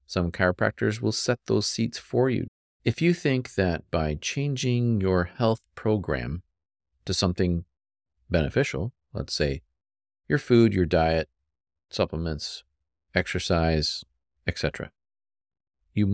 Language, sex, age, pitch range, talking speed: English, male, 40-59, 75-105 Hz, 110 wpm